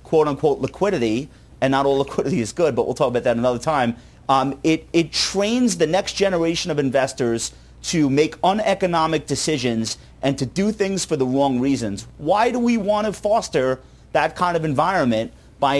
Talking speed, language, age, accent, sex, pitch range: 180 wpm, English, 40-59, American, male, 130-185 Hz